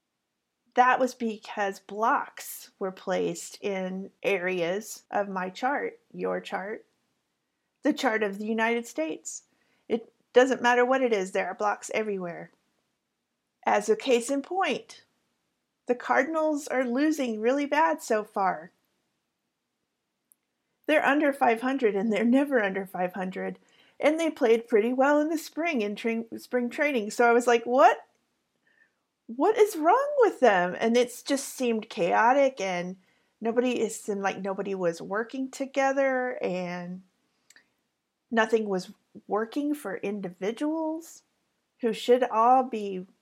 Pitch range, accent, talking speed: 200-265 Hz, American, 130 wpm